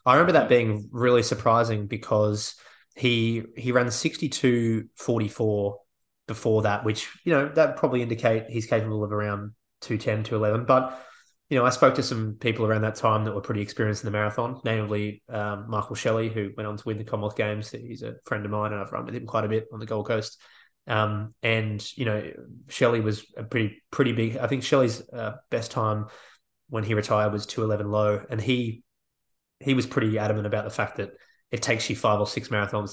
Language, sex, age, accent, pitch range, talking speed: English, male, 20-39, Australian, 105-120 Hz, 200 wpm